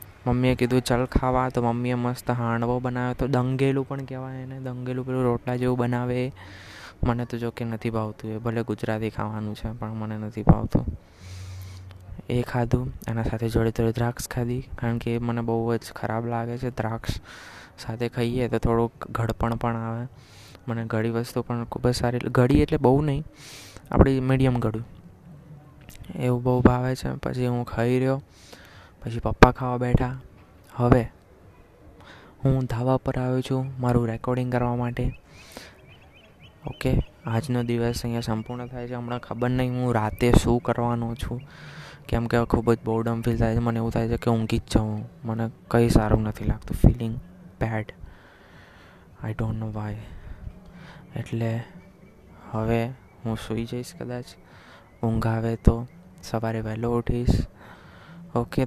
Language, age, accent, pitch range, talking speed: Gujarati, 20-39, native, 110-125 Hz, 125 wpm